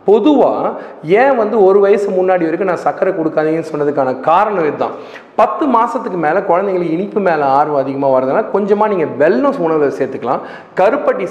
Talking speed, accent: 150 wpm, native